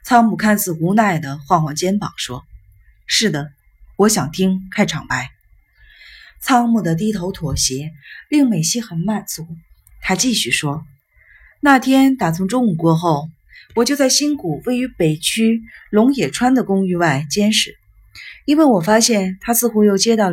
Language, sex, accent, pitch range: Chinese, female, native, 165-235 Hz